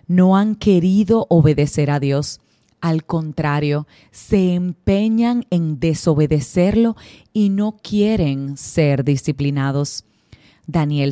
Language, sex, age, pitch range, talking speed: Spanish, female, 30-49, 140-190 Hz, 95 wpm